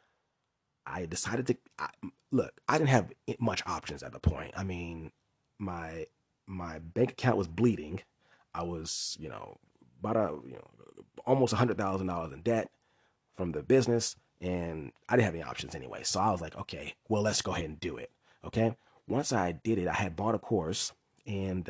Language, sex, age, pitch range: English, male, 30-49, 90-115 Hz